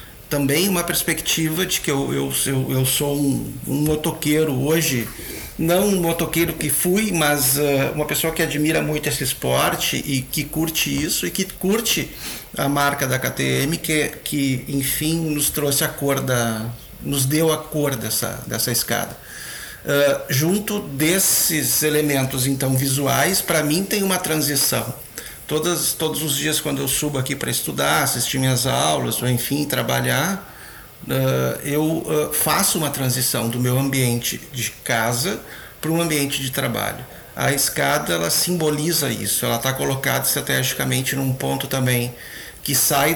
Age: 50-69